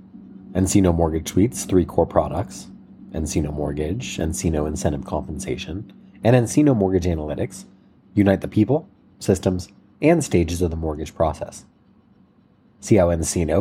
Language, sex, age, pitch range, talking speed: English, male, 30-49, 85-100 Hz, 125 wpm